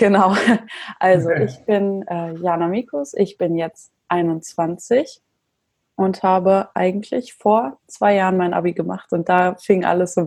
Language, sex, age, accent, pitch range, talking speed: German, female, 20-39, German, 170-195 Hz, 150 wpm